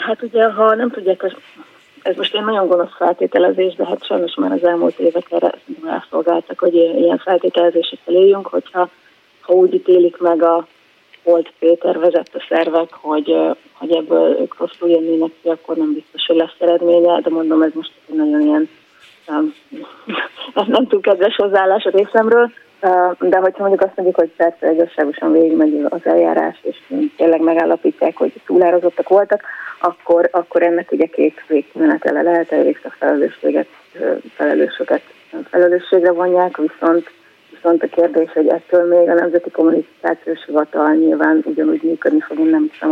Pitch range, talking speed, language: 165-185 Hz, 150 wpm, Hungarian